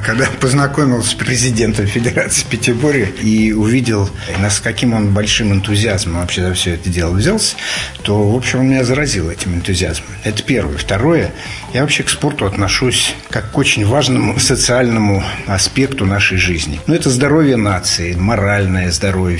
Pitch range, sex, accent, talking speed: 95-120 Hz, male, native, 155 wpm